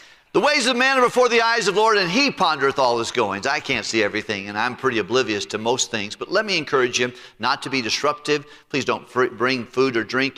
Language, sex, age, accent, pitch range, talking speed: English, male, 50-69, American, 110-150 Hz, 255 wpm